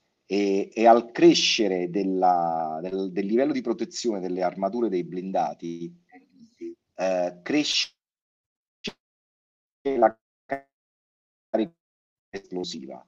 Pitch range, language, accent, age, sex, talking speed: 90-120 Hz, Italian, native, 30-49, male, 85 wpm